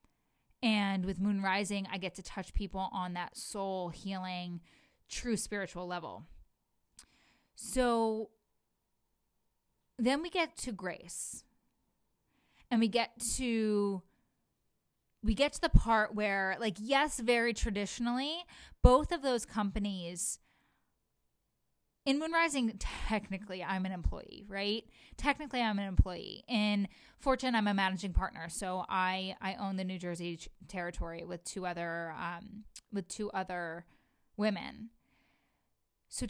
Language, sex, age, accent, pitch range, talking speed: English, female, 20-39, American, 185-235 Hz, 125 wpm